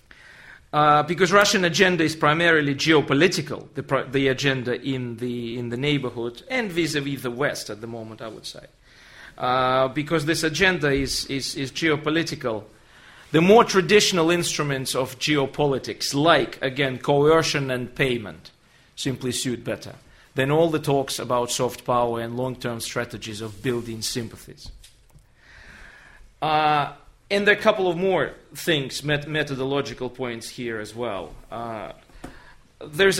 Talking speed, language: 135 wpm, English